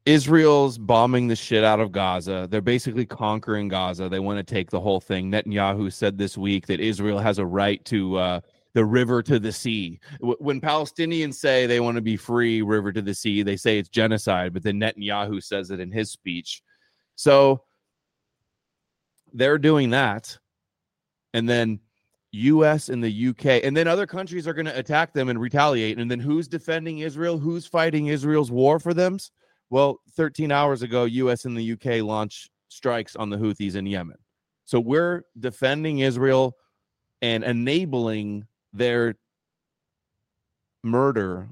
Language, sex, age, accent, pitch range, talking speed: English, male, 30-49, American, 100-135 Hz, 165 wpm